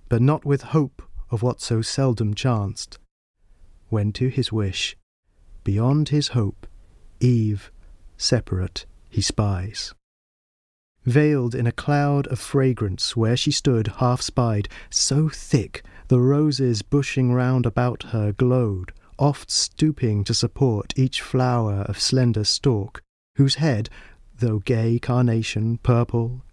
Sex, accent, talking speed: male, British, 120 wpm